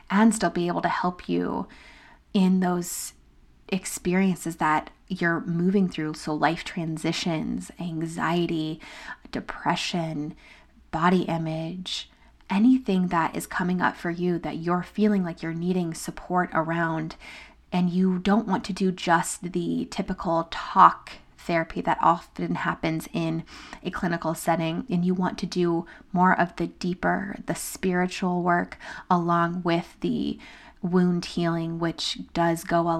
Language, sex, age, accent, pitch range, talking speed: English, female, 20-39, American, 165-185 Hz, 135 wpm